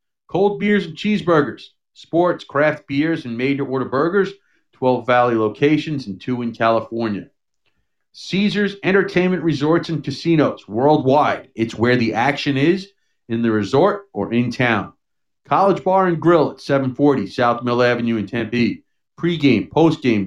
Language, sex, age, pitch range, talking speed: English, male, 40-59, 115-145 Hz, 140 wpm